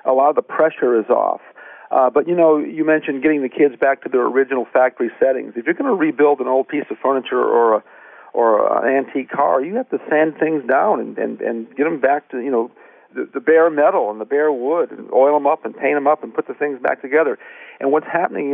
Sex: male